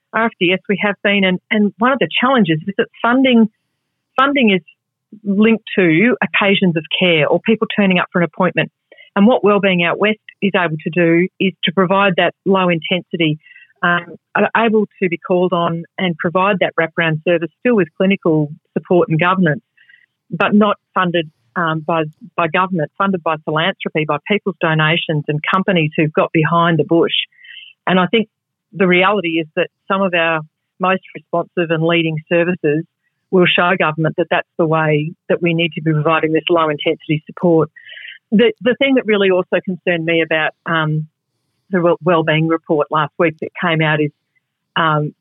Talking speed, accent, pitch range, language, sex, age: 175 wpm, Australian, 160-195 Hz, English, female, 40-59